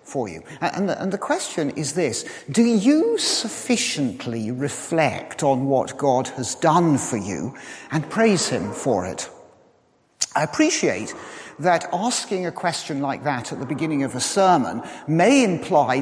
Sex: male